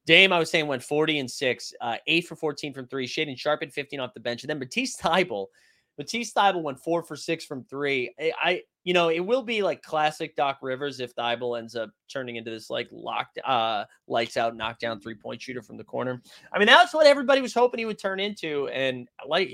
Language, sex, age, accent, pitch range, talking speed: English, male, 30-49, American, 125-175 Hz, 225 wpm